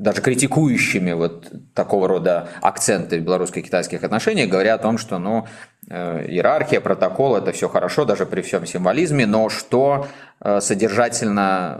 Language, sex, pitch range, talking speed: Russian, male, 95-125 Hz, 130 wpm